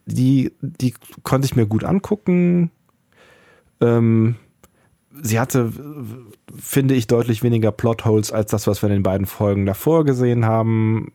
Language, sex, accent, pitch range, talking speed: German, male, German, 95-120 Hz, 135 wpm